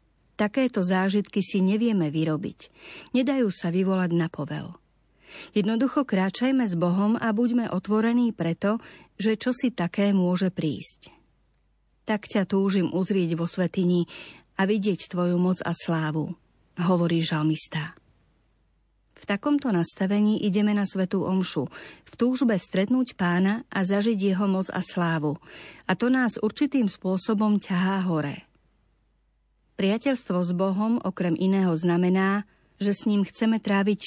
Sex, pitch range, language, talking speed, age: female, 175-220 Hz, Slovak, 130 wpm, 40-59